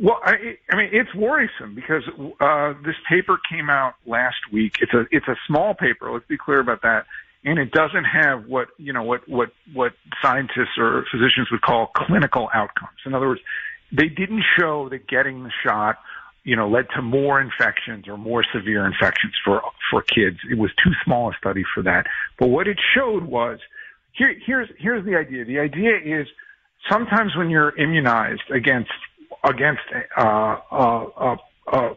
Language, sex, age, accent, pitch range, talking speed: English, male, 50-69, American, 130-185 Hz, 175 wpm